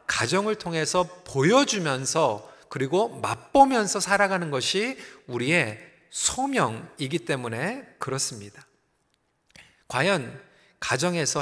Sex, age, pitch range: male, 40-59, 145-215 Hz